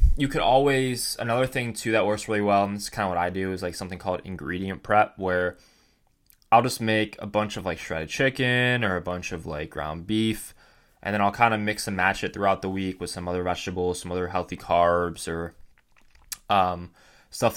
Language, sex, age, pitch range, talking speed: English, male, 20-39, 85-105 Hz, 215 wpm